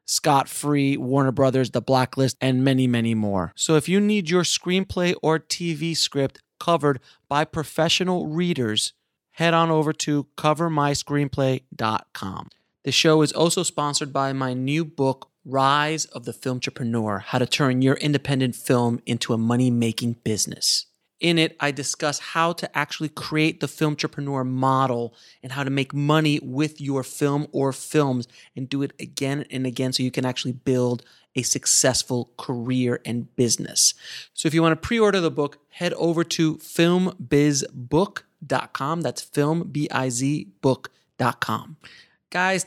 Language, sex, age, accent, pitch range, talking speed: English, male, 30-49, American, 130-160 Hz, 150 wpm